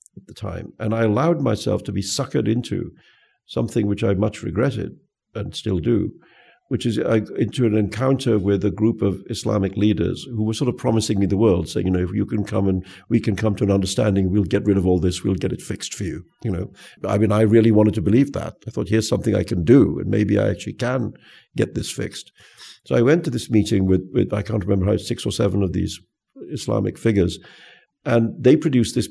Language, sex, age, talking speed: English, male, 50-69, 235 wpm